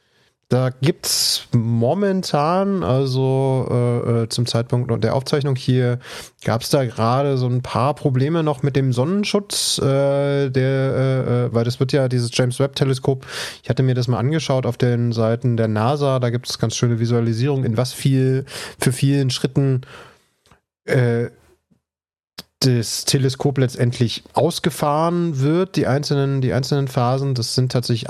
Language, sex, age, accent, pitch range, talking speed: German, male, 30-49, German, 115-135 Hz, 145 wpm